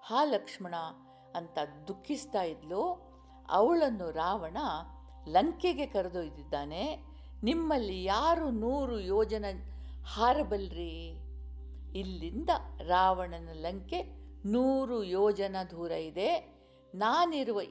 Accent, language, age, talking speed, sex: native, Kannada, 50-69, 75 wpm, female